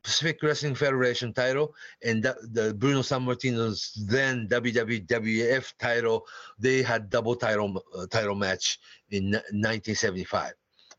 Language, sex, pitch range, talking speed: English, male, 100-130 Hz, 120 wpm